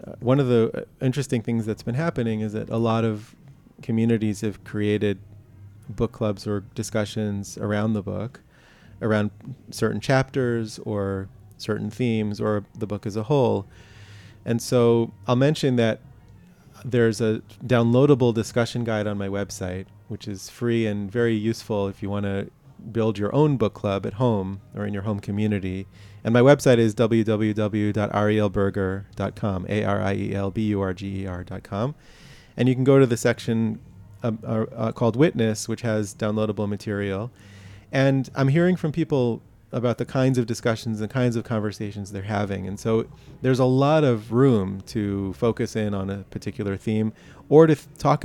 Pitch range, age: 105-120 Hz, 30-49